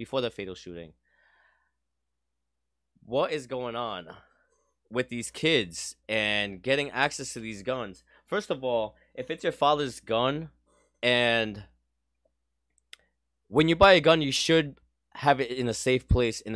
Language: English